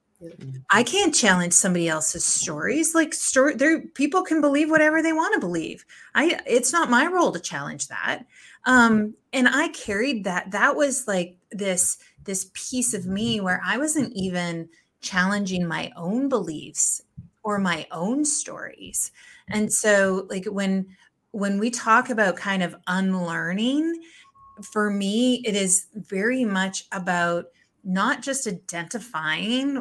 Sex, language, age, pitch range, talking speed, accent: female, English, 30-49, 185-245 Hz, 140 wpm, American